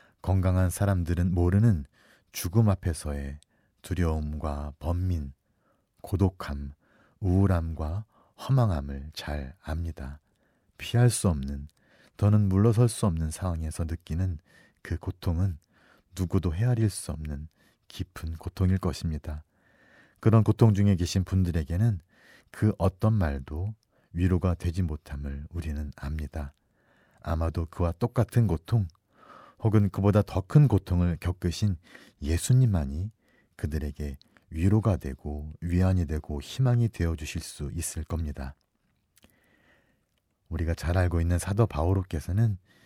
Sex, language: male, Korean